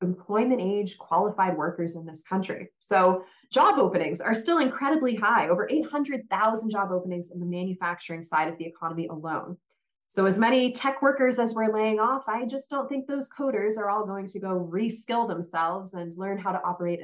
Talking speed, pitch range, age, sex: 185 wpm, 185-275 Hz, 20-39, female